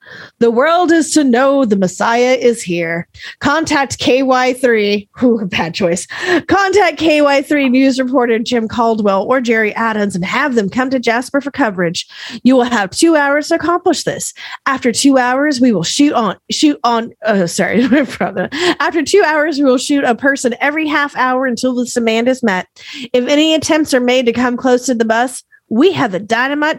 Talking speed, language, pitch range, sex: 185 wpm, English, 230-300 Hz, female